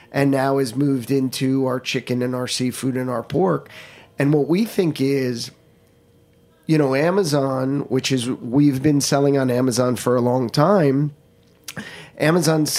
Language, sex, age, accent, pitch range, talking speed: English, male, 30-49, American, 125-145 Hz, 155 wpm